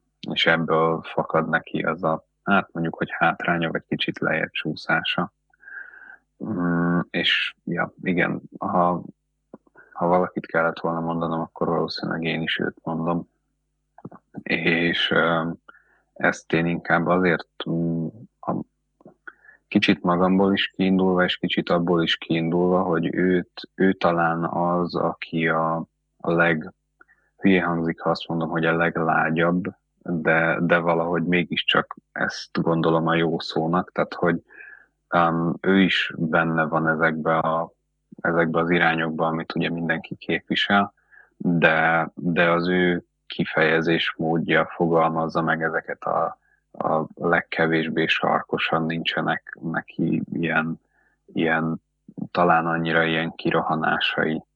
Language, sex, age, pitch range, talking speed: Hungarian, male, 30-49, 80-85 Hz, 120 wpm